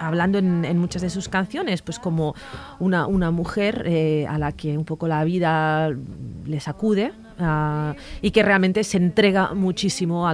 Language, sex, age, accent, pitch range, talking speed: Spanish, female, 30-49, Spanish, 155-205 Hz, 170 wpm